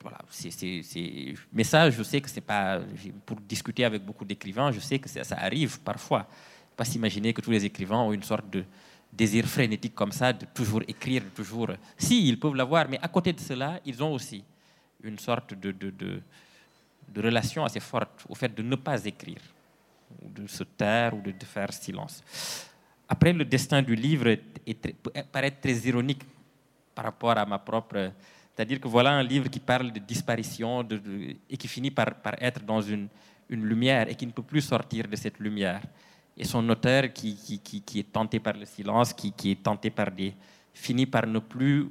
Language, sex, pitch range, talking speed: French, male, 105-135 Hz, 210 wpm